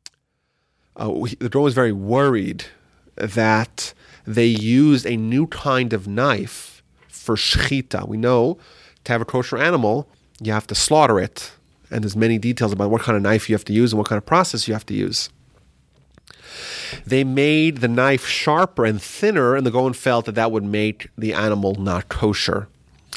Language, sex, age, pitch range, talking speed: English, male, 30-49, 105-140 Hz, 180 wpm